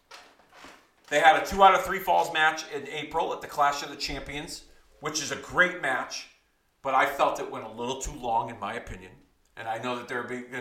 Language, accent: English, American